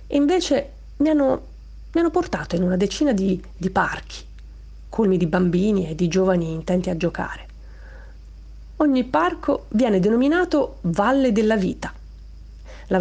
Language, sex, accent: Italian, female, native